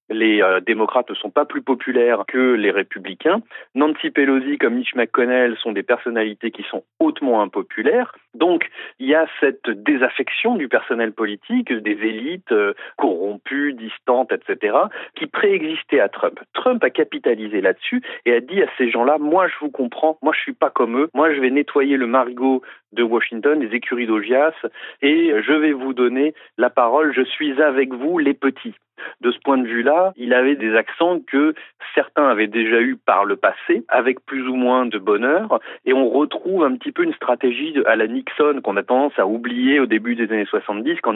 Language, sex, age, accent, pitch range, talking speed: French, male, 40-59, French, 115-155 Hz, 195 wpm